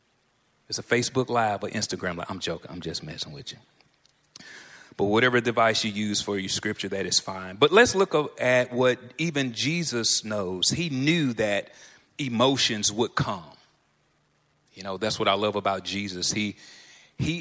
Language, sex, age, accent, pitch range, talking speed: English, male, 30-49, American, 115-160 Hz, 170 wpm